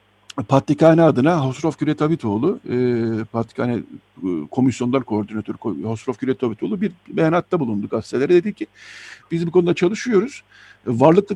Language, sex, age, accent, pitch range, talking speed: Turkish, male, 60-79, native, 120-165 Hz, 110 wpm